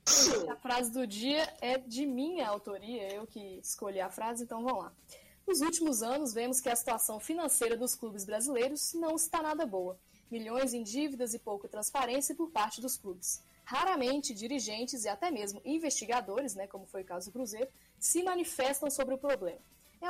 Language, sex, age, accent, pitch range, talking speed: Portuguese, female, 10-29, Brazilian, 225-300 Hz, 180 wpm